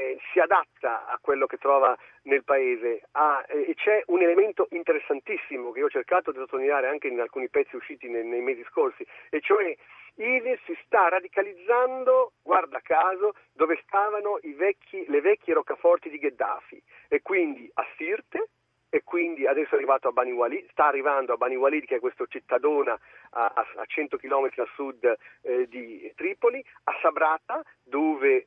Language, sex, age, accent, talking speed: Italian, male, 40-59, native, 160 wpm